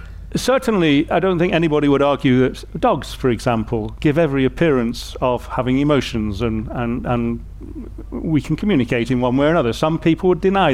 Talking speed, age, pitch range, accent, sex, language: 180 wpm, 40-59, 115-155 Hz, British, male, English